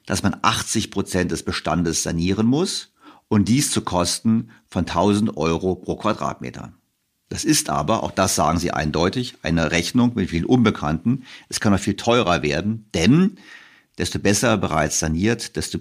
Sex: male